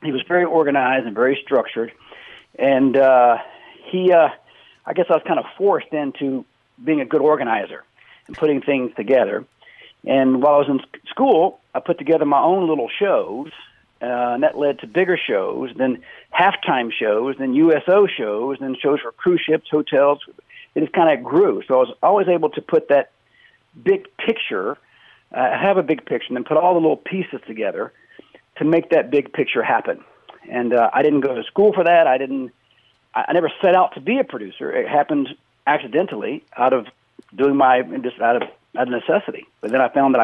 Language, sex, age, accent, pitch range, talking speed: English, male, 50-69, American, 130-180 Hz, 195 wpm